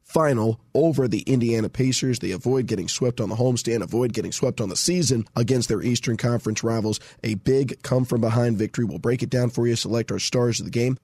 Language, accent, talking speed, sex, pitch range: English, American, 210 wpm, male, 110-135 Hz